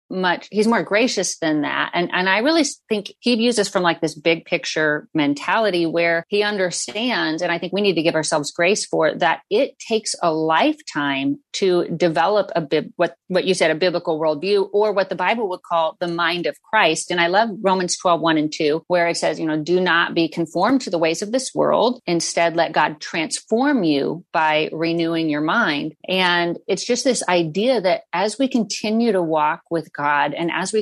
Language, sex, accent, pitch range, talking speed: English, female, American, 165-210 Hz, 210 wpm